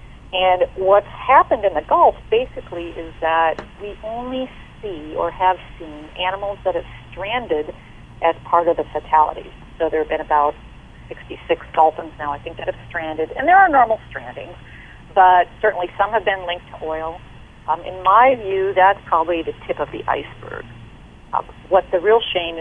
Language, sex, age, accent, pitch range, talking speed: English, female, 40-59, American, 155-195 Hz, 175 wpm